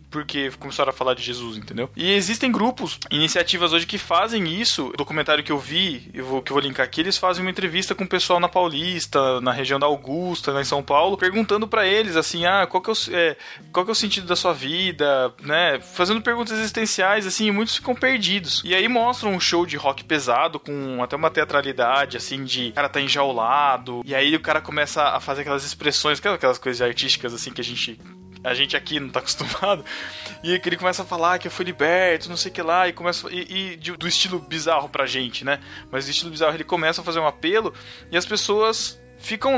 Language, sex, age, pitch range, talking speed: Portuguese, male, 20-39, 140-195 Hz, 220 wpm